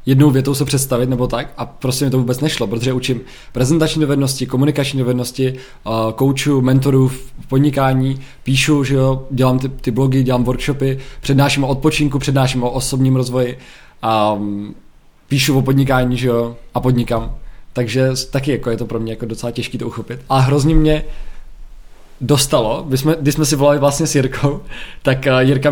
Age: 20-39